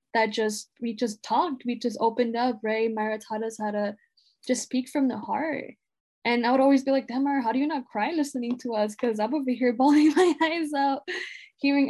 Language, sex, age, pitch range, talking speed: English, female, 10-29, 220-270 Hz, 225 wpm